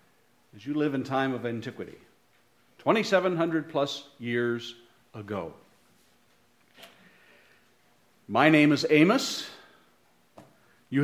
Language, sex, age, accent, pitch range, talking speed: English, male, 50-69, American, 125-165 Hz, 85 wpm